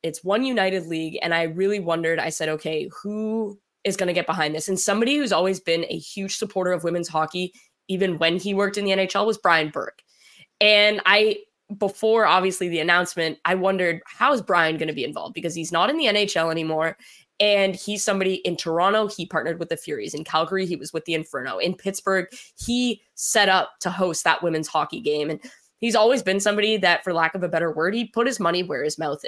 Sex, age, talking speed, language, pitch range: female, 10-29, 220 wpm, English, 165-200 Hz